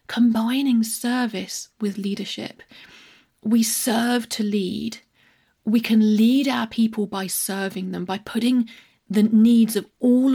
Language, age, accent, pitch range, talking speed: English, 30-49, British, 195-230 Hz, 130 wpm